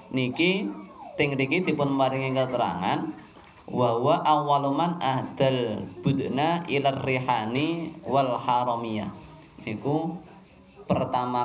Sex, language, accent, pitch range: male, Indonesian, native, 125-155 Hz